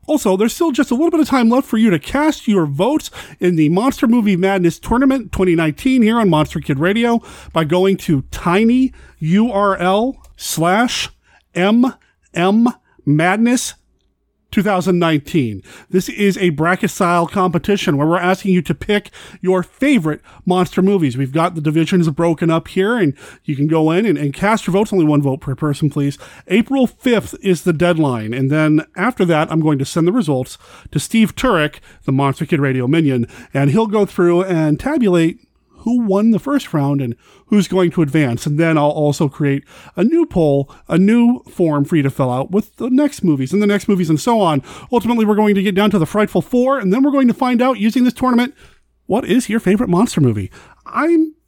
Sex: male